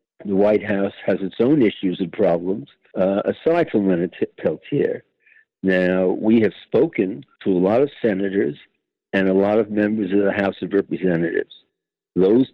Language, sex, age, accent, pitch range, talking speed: English, male, 60-79, American, 95-115 Hz, 165 wpm